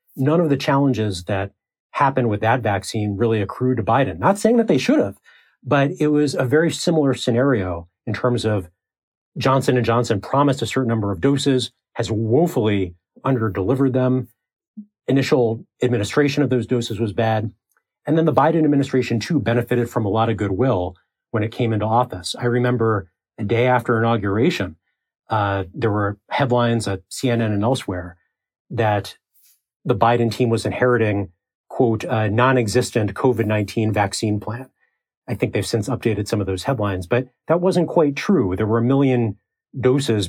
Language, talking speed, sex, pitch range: English, 165 wpm, male, 105-130 Hz